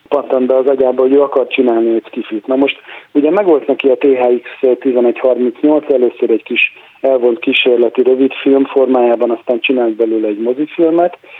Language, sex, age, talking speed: Hungarian, male, 40-59, 160 wpm